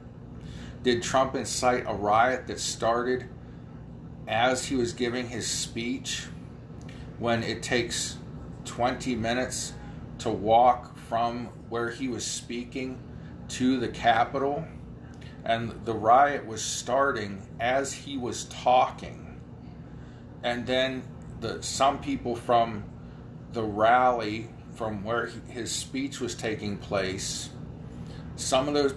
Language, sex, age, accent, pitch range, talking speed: English, male, 40-59, American, 115-130 Hz, 110 wpm